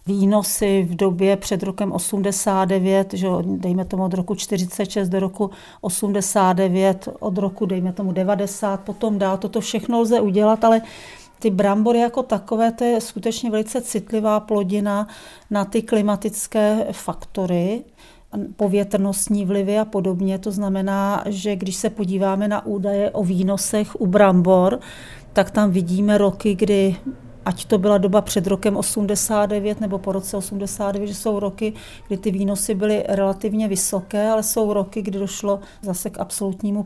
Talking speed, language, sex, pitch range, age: 145 wpm, Czech, female, 195-215 Hz, 40-59